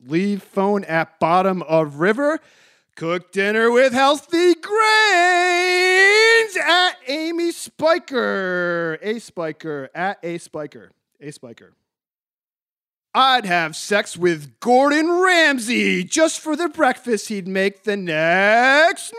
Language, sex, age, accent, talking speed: English, male, 40-59, American, 110 wpm